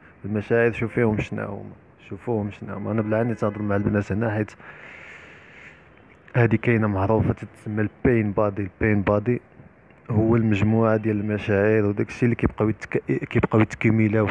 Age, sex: 20-39, male